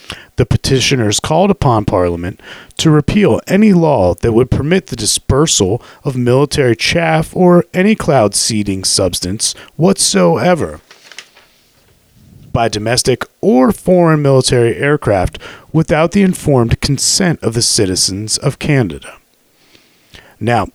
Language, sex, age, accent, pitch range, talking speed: English, male, 30-49, American, 110-155 Hz, 110 wpm